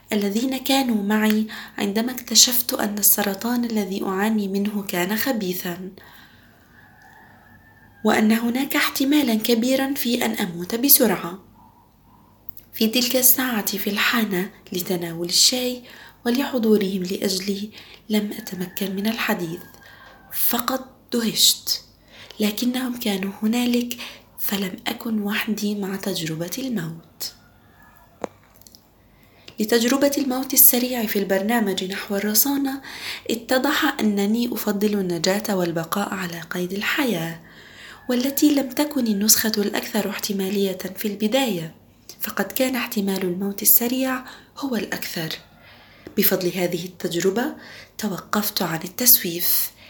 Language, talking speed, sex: English, 95 wpm, female